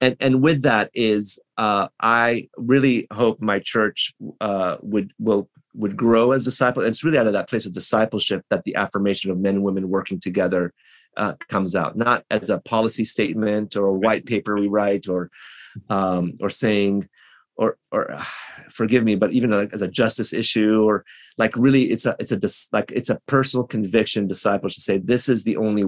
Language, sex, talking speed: English, male, 195 wpm